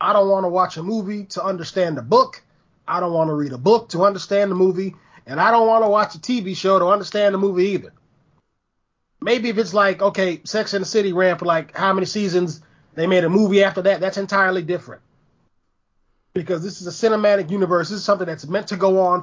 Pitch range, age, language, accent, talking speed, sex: 170-205 Hz, 30-49, English, American, 230 wpm, male